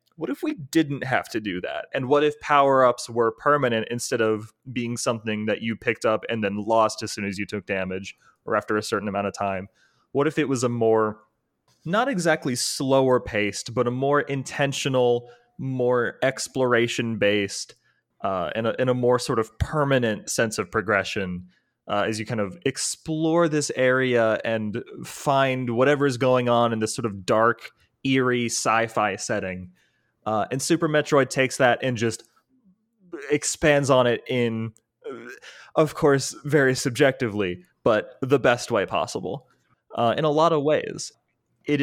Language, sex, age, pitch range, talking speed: English, male, 20-39, 110-140 Hz, 165 wpm